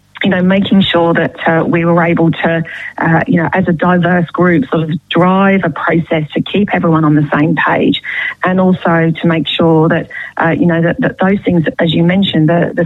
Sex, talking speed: female, 220 wpm